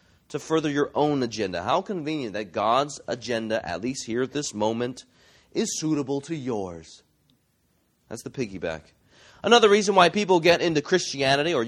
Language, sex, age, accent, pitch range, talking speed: English, male, 30-49, American, 115-155 Hz, 160 wpm